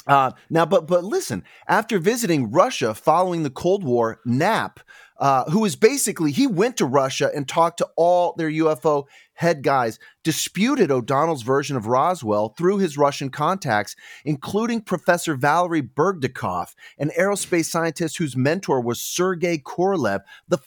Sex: male